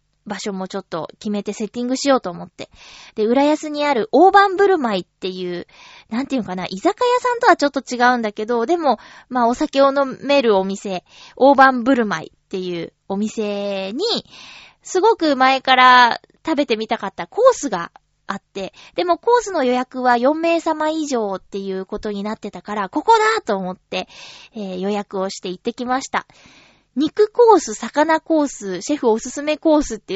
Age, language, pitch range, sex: 20-39, Japanese, 210-345 Hz, female